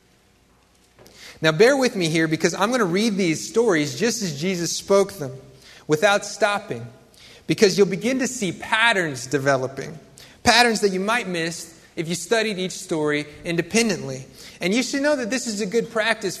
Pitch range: 150-200 Hz